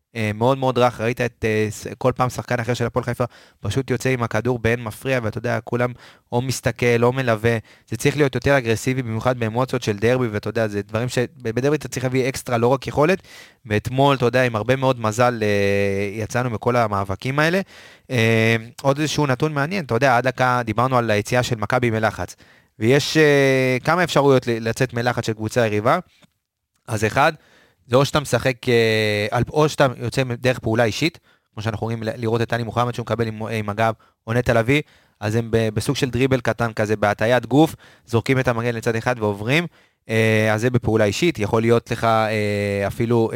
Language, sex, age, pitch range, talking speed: Hebrew, male, 20-39, 110-130 Hz, 175 wpm